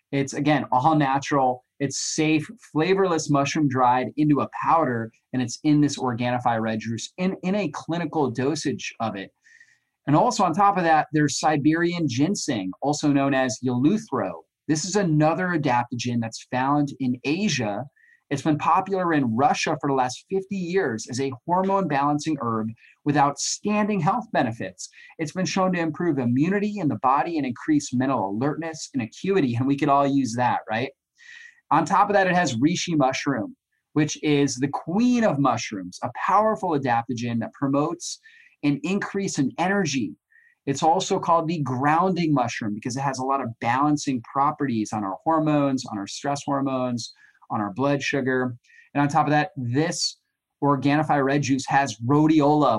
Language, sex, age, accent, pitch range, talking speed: English, male, 30-49, American, 130-165 Hz, 165 wpm